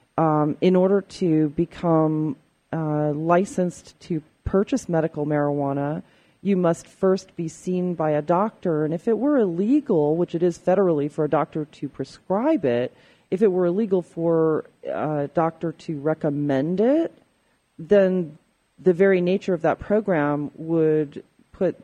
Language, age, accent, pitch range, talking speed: English, 40-59, American, 155-190 Hz, 145 wpm